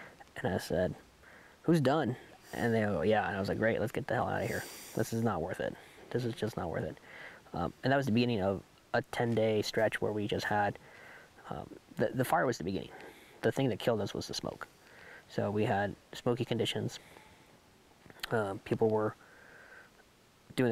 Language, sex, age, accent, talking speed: English, male, 20-39, American, 205 wpm